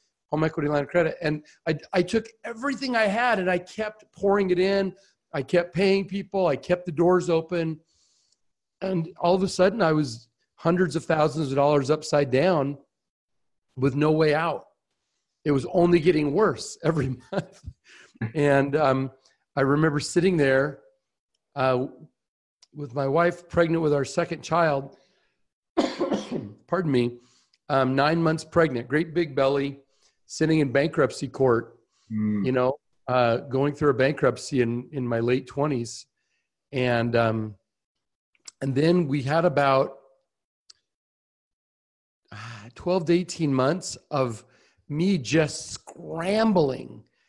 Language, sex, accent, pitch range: English, male, American, 135-175 Hz